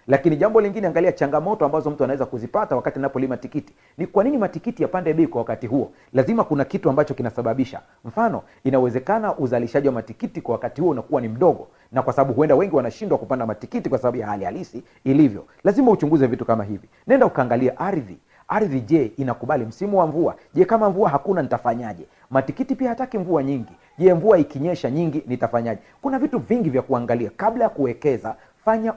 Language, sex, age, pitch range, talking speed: Swahili, male, 40-59, 125-175 Hz, 185 wpm